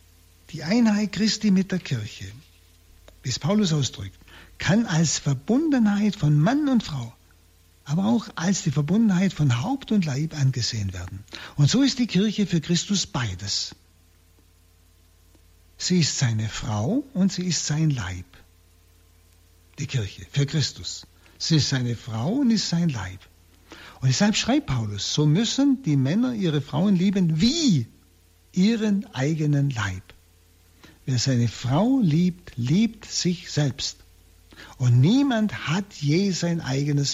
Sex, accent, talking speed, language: male, German, 135 wpm, German